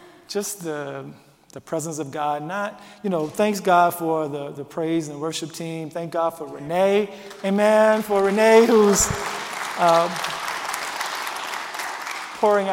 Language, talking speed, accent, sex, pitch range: English, 130 wpm, American, male, 150-180 Hz